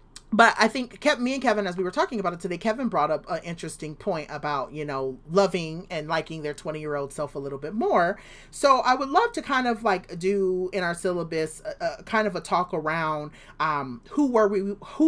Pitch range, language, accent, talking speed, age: 145-195 Hz, English, American, 225 wpm, 30-49